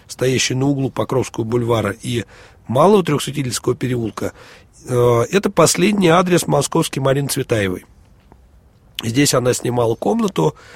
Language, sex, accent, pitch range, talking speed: Russian, male, native, 110-145 Hz, 105 wpm